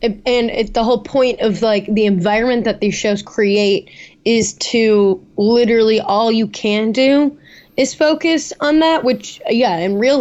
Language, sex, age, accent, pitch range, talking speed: English, female, 10-29, American, 195-230 Hz, 160 wpm